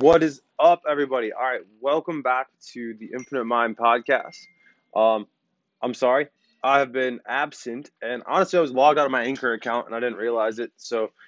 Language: English